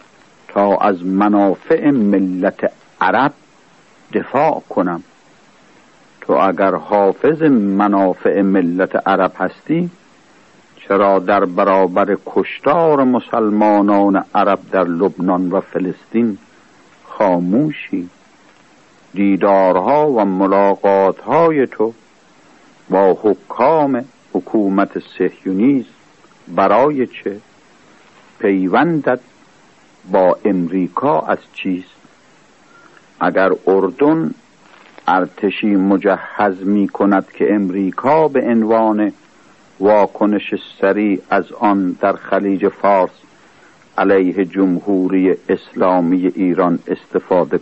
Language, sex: Persian, male